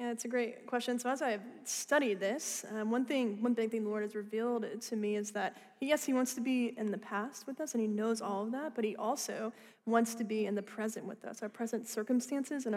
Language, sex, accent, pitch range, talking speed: English, female, American, 210-245 Hz, 265 wpm